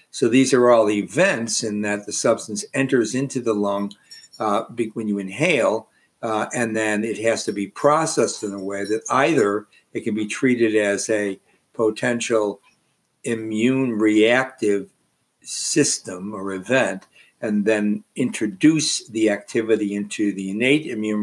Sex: male